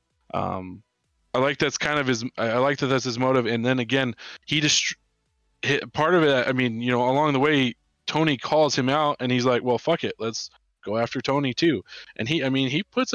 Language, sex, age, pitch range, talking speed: English, male, 20-39, 110-140 Hz, 225 wpm